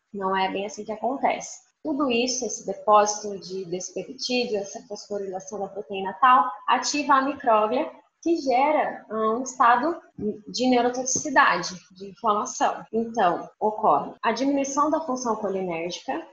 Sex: female